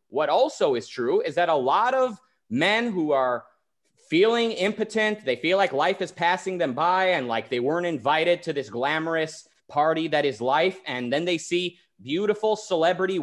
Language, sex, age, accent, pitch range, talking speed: English, male, 30-49, American, 130-190 Hz, 180 wpm